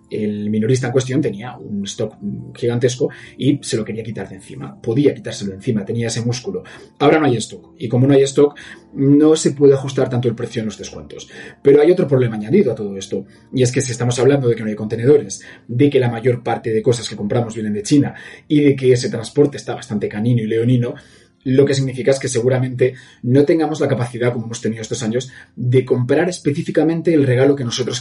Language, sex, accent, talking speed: Spanish, male, Spanish, 225 wpm